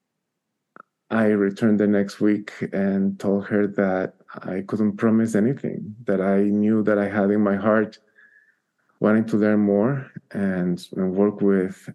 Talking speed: 150 wpm